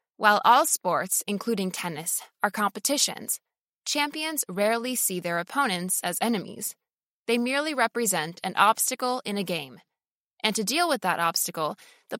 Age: 20-39